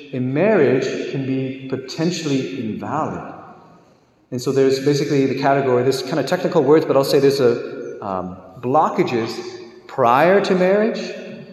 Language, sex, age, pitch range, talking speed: English, male, 30-49, 125-180 Hz, 140 wpm